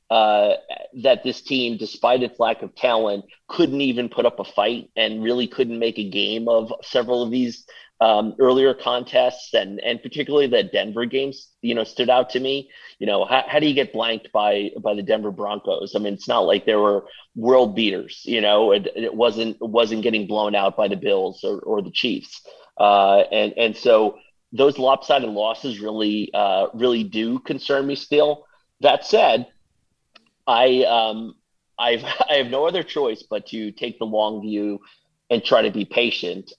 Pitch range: 105-130 Hz